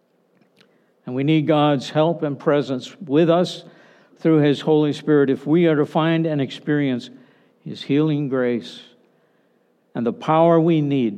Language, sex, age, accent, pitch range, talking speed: English, male, 60-79, American, 135-165 Hz, 150 wpm